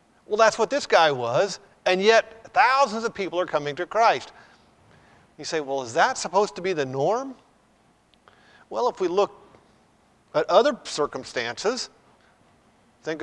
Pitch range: 170-225 Hz